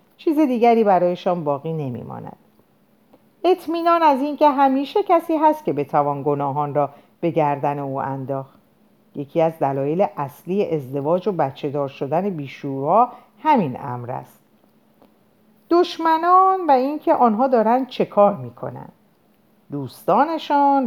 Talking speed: 115 wpm